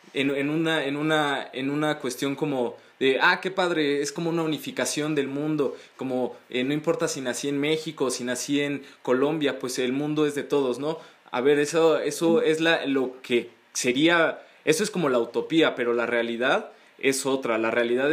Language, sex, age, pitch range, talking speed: Spanish, male, 20-39, 125-155 Hz, 195 wpm